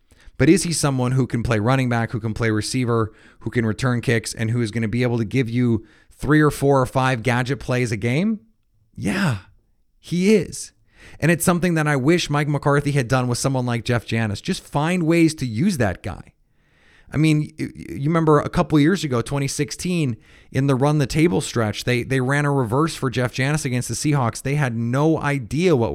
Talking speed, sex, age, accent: 215 wpm, male, 30-49, American